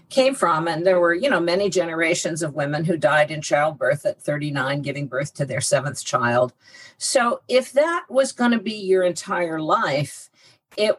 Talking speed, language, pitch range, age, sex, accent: 185 wpm, English, 155-205 Hz, 50-69, female, American